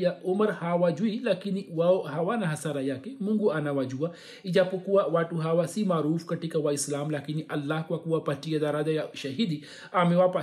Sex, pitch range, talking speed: male, 145-175 Hz, 160 wpm